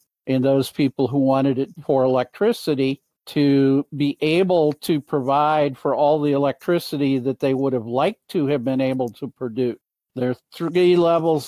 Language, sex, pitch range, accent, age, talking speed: English, male, 140-160 Hz, American, 50-69, 165 wpm